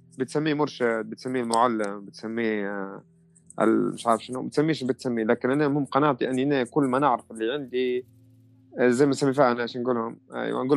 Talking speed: 165 wpm